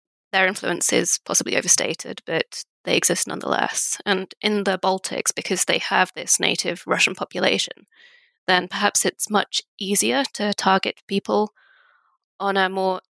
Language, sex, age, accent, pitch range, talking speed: English, female, 20-39, British, 185-215 Hz, 140 wpm